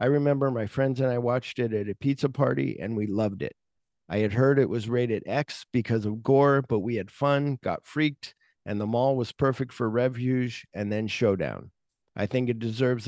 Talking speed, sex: 210 wpm, male